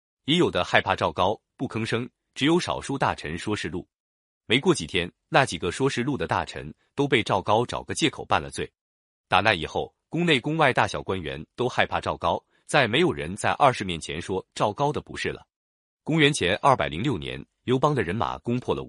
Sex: male